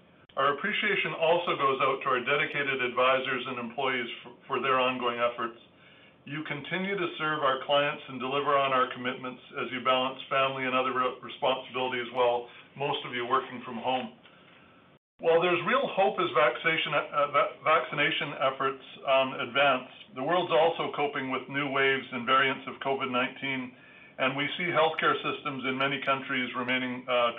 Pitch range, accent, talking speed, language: 130-145 Hz, American, 160 wpm, English